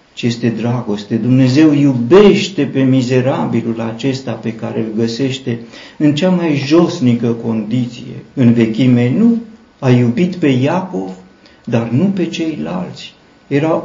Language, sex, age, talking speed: Romanian, male, 50-69, 125 wpm